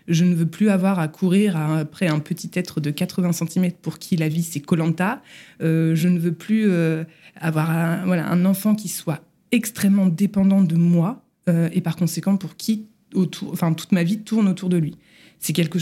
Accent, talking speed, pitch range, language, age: French, 210 wpm, 165-205 Hz, French, 20-39